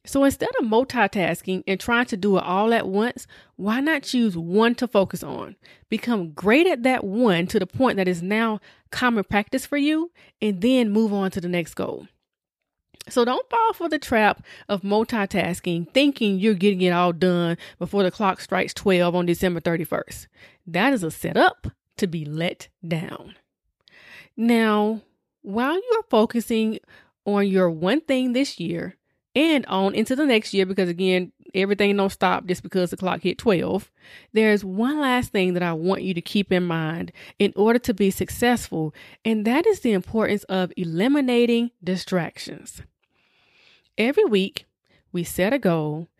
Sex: female